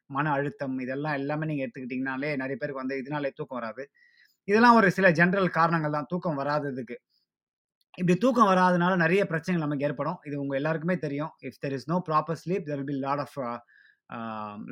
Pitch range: 140-185 Hz